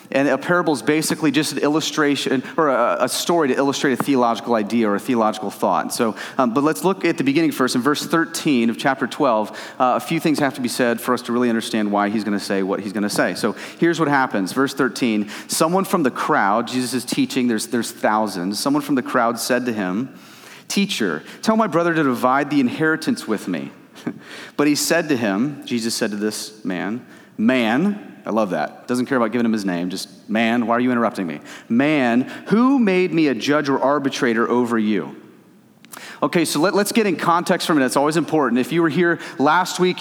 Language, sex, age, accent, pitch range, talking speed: English, male, 30-49, American, 130-175 Hz, 220 wpm